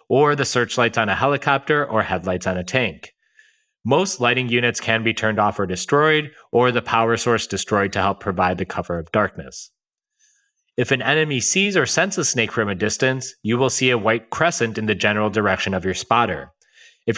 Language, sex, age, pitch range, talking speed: English, male, 30-49, 110-140 Hz, 200 wpm